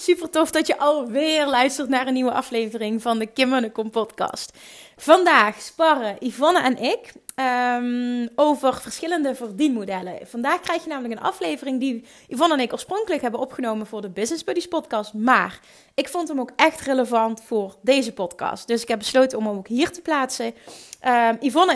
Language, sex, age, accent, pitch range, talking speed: Dutch, female, 20-39, Dutch, 220-280 Hz, 165 wpm